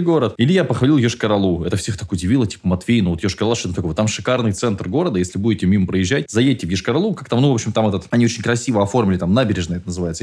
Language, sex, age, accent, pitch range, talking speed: Russian, male, 20-39, native, 100-145 Hz, 245 wpm